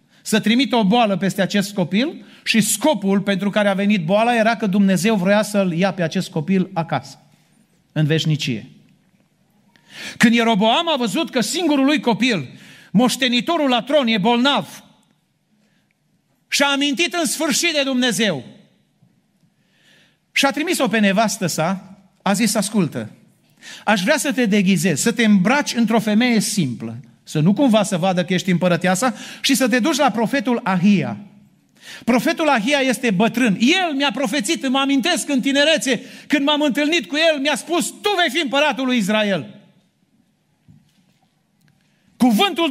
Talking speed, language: 150 wpm, Romanian